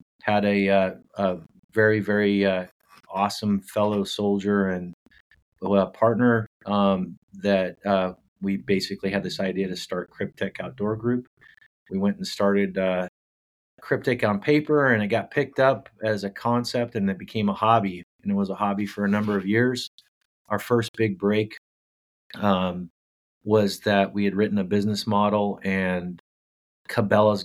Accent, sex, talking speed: American, male, 155 wpm